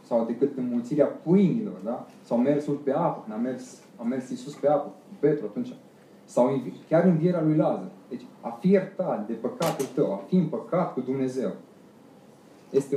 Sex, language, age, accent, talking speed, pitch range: male, Romanian, 20-39, native, 165 wpm, 130-165 Hz